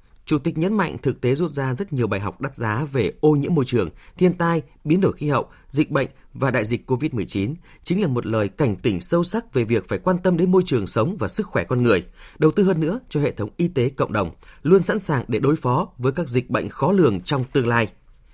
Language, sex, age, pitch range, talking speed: Vietnamese, male, 20-39, 125-175 Hz, 260 wpm